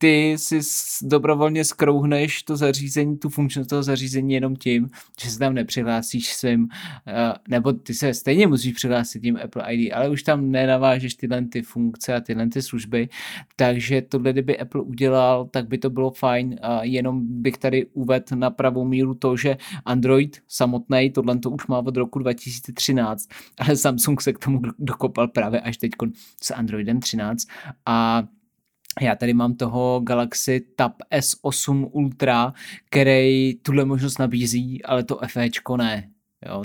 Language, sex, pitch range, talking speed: Czech, male, 120-135 Hz, 150 wpm